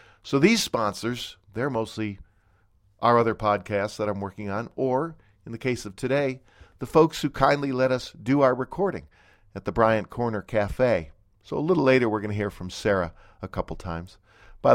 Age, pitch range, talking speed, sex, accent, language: 50-69, 95-120 Hz, 185 wpm, male, American, English